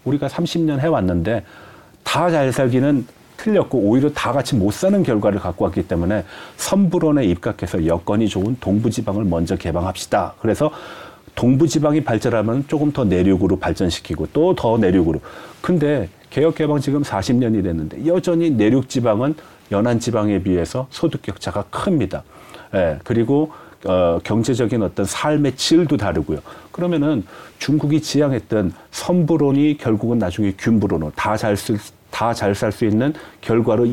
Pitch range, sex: 100-150 Hz, male